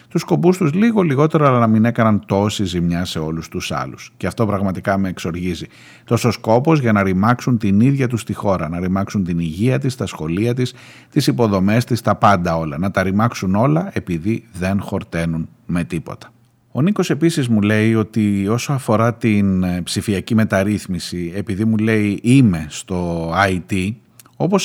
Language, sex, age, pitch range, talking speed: Greek, male, 30-49, 95-125 Hz, 175 wpm